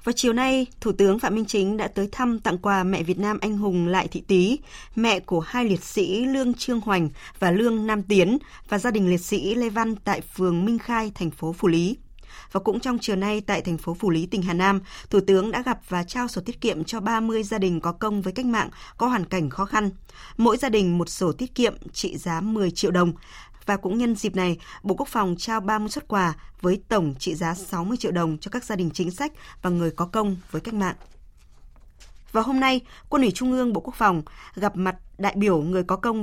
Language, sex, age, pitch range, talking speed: Vietnamese, female, 20-39, 180-225 Hz, 240 wpm